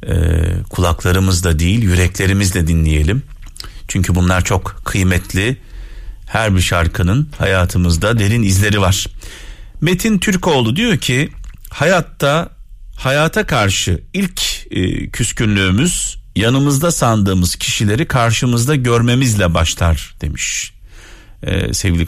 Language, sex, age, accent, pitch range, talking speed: Turkish, male, 50-69, native, 90-145 Hz, 100 wpm